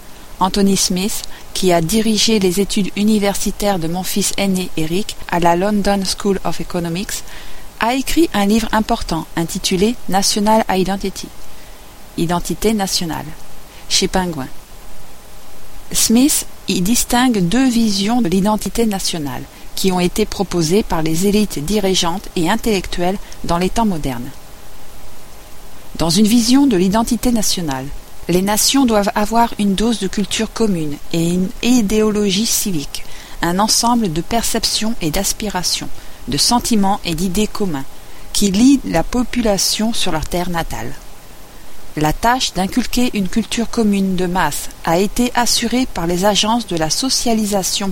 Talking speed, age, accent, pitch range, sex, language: 135 wpm, 50-69, French, 180-220 Hz, female, French